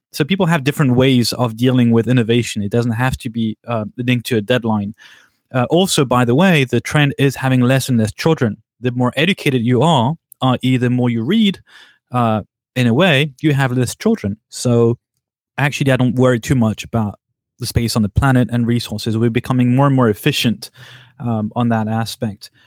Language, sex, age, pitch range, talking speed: English, male, 30-49, 120-145 Hz, 200 wpm